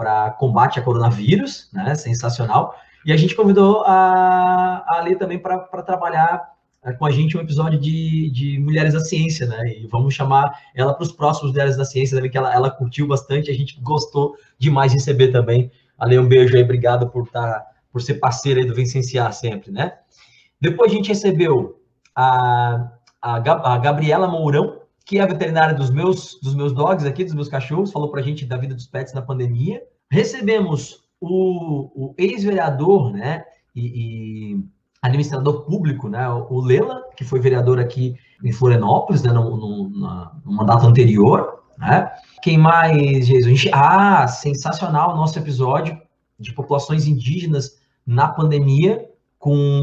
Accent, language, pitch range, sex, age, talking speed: Brazilian, Portuguese, 125-165 Hz, male, 20-39, 160 wpm